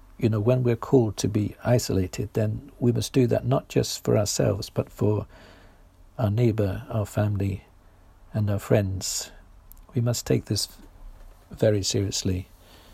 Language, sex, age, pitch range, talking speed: English, male, 50-69, 95-120 Hz, 150 wpm